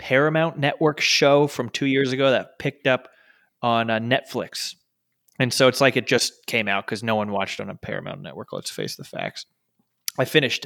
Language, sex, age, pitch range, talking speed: English, male, 20-39, 115-140 Hz, 195 wpm